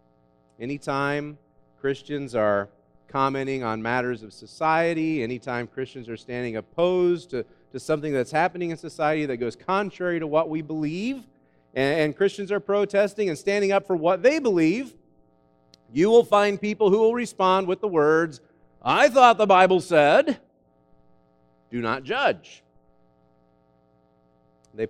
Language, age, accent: English, 40-59, American